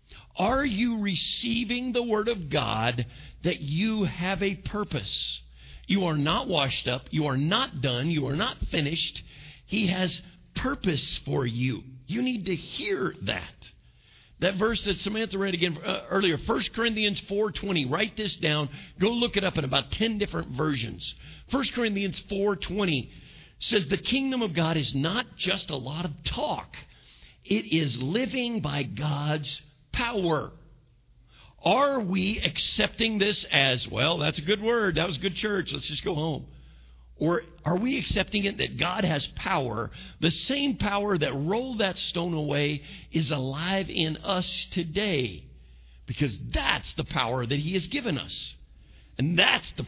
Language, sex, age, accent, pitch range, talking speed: English, male, 50-69, American, 140-205 Hz, 160 wpm